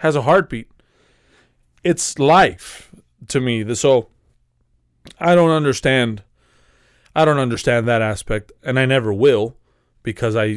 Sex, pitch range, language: male, 110-140 Hz, English